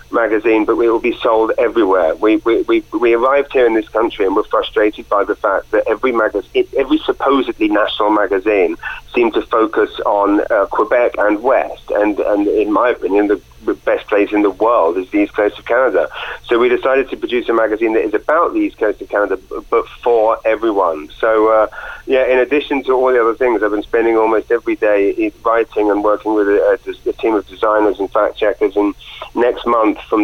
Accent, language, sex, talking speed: British, English, male, 205 wpm